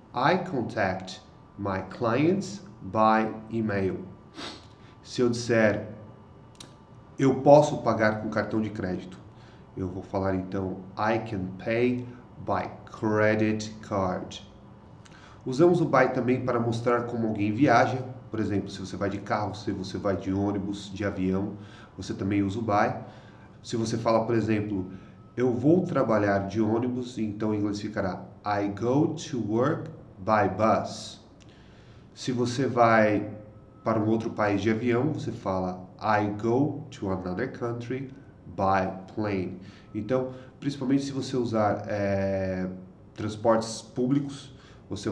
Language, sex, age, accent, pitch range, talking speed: Portuguese, male, 30-49, Brazilian, 100-120 Hz, 135 wpm